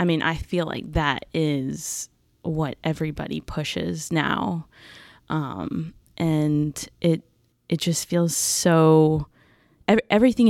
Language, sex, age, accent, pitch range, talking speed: English, female, 20-39, American, 150-180 Hz, 115 wpm